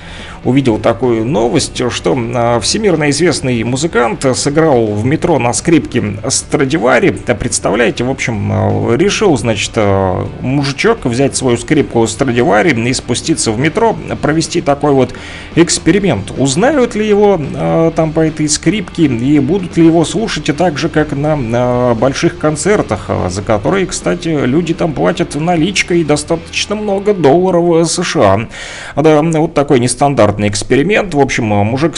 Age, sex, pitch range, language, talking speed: 30-49, male, 115-160 Hz, Russian, 135 wpm